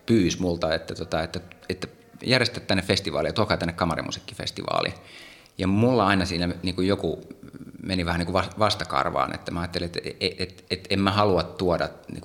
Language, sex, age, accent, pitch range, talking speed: Finnish, male, 30-49, native, 80-95 Hz, 180 wpm